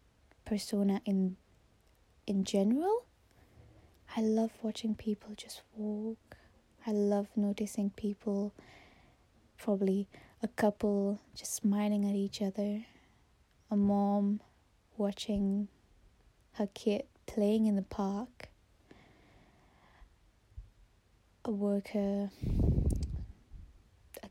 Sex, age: female, 20-39